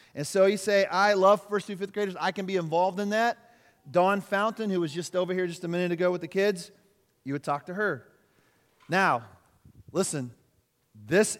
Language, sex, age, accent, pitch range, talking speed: English, male, 30-49, American, 135-195 Hz, 200 wpm